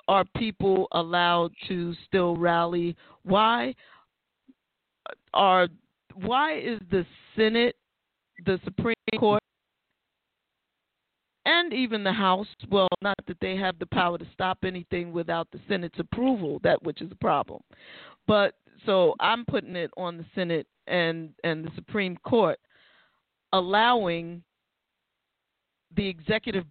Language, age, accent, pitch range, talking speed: English, 40-59, American, 175-230 Hz, 120 wpm